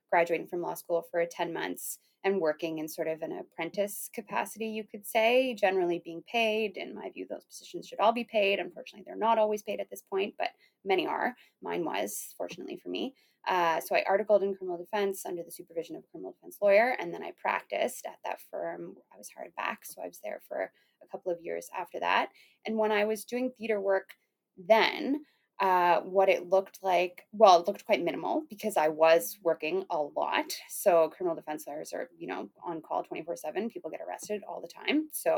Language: English